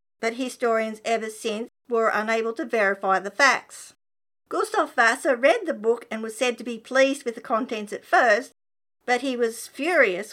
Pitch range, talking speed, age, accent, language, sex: 215-255 Hz, 175 wpm, 50-69, Australian, English, female